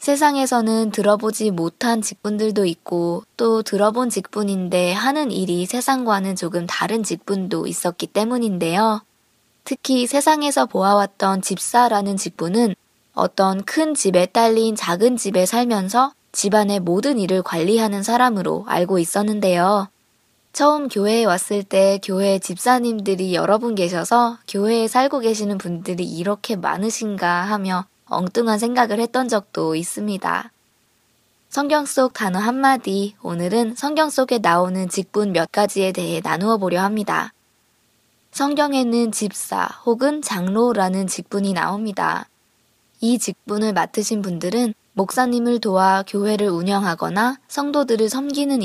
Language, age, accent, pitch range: Korean, 20-39, native, 190-240 Hz